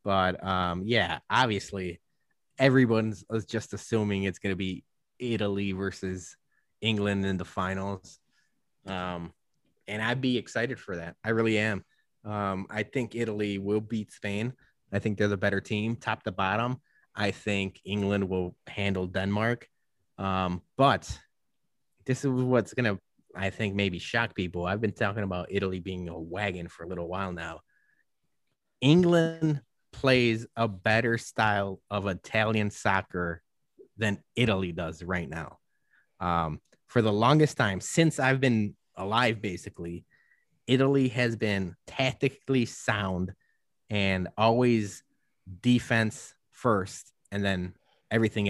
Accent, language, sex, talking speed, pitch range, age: American, English, male, 135 wpm, 95-120 Hz, 20-39